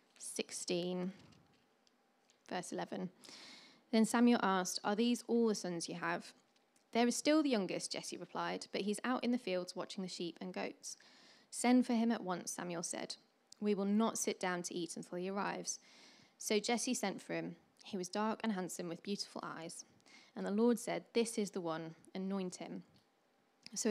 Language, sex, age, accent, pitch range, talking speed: English, female, 20-39, British, 185-230 Hz, 180 wpm